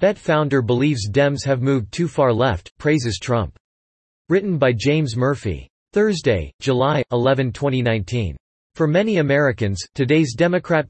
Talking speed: 130 wpm